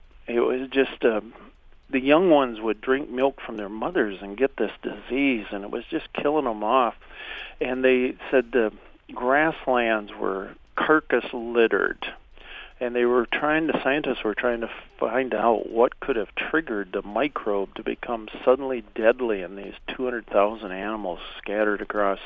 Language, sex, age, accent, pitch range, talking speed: English, male, 50-69, American, 105-125 Hz, 160 wpm